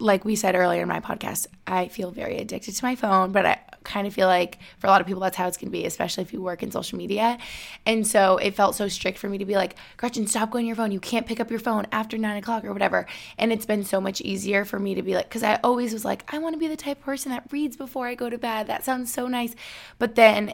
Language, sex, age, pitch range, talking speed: English, female, 20-39, 195-235 Hz, 300 wpm